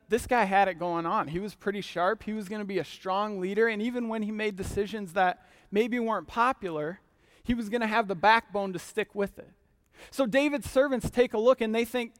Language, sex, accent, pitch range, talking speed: English, male, American, 175-230 Hz, 235 wpm